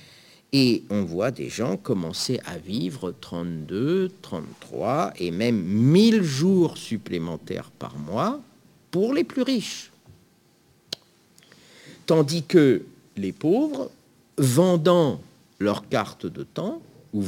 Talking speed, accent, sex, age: 110 wpm, French, male, 50-69